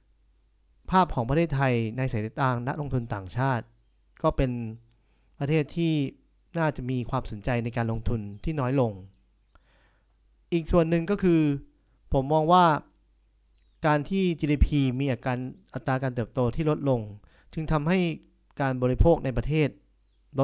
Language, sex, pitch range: Thai, male, 115-150 Hz